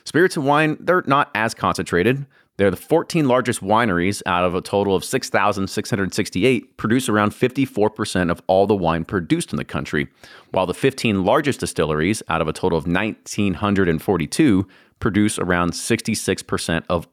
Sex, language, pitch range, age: male, English, 90-115 Hz, 30-49